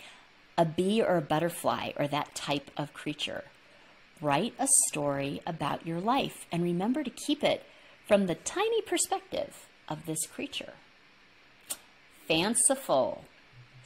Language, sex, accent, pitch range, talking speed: English, female, American, 160-255 Hz, 125 wpm